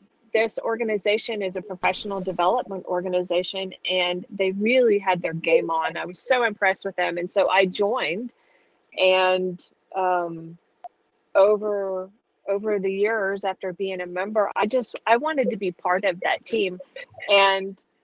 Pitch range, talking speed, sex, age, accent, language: 185-235 Hz, 150 wpm, female, 30-49, American, English